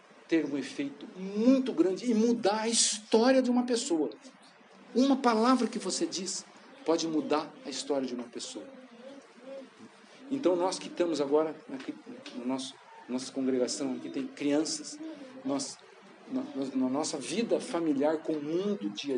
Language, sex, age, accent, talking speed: Portuguese, male, 50-69, Brazilian, 160 wpm